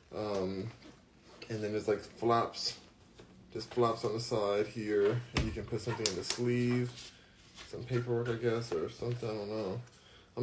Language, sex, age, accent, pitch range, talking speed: English, male, 20-39, American, 105-125 Hz, 175 wpm